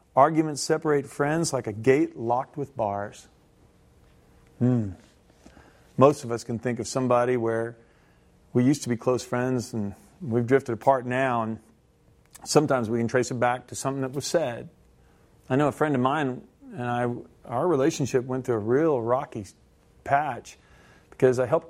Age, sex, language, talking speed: 40-59, male, English, 165 wpm